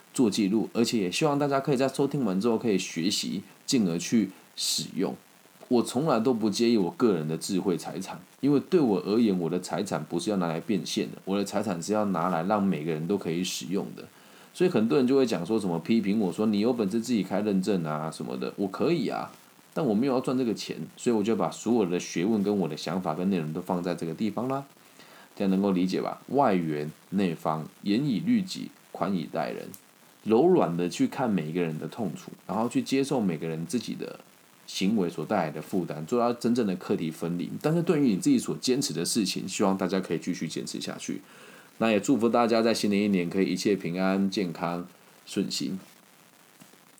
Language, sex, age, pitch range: Chinese, male, 20-39, 90-120 Hz